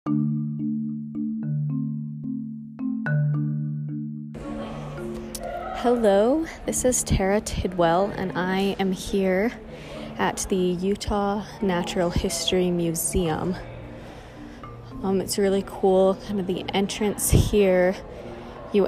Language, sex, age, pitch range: English, female, 20-39, 130-190 Hz